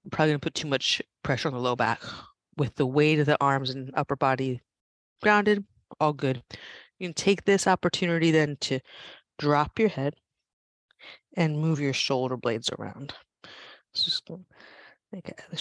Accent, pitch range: American, 130-160 Hz